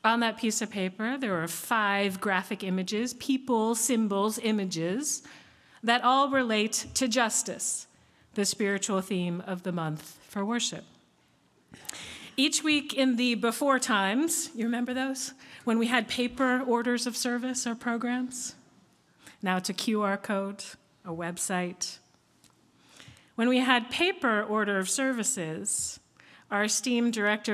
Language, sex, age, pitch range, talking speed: English, female, 40-59, 190-255 Hz, 135 wpm